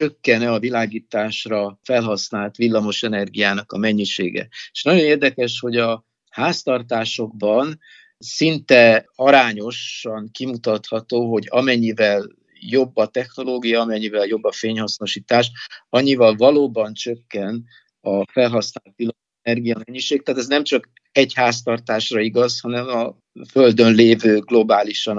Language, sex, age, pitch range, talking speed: Hungarian, male, 50-69, 110-125 Hz, 100 wpm